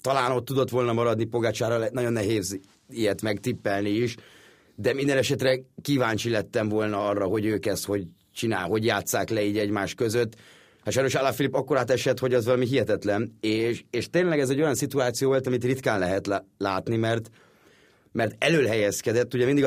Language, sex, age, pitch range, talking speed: Hungarian, male, 30-49, 110-130 Hz, 185 wpm